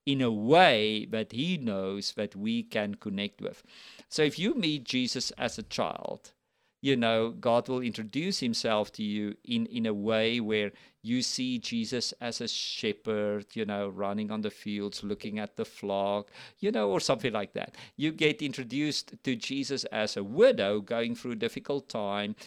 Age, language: 50-69, English